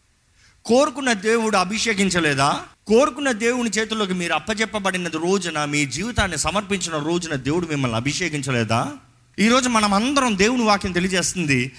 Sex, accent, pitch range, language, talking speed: male, native, 140-215 Hz, Telugu, 110 wpm